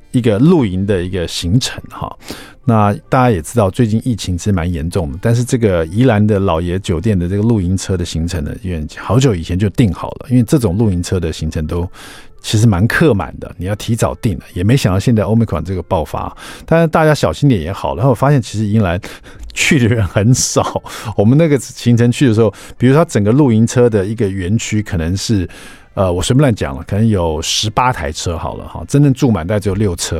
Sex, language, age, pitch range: male, Chinese, 50-69, 95-130 Hz